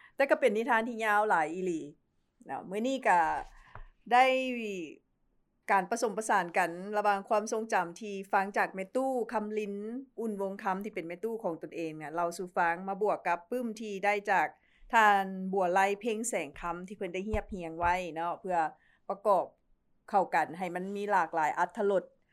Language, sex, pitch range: English, female, 175-215 Hz